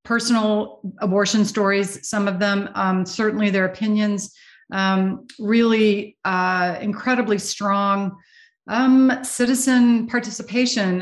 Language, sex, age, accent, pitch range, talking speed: English, female, 40-59, American, 195-230 Hz, 100 wpm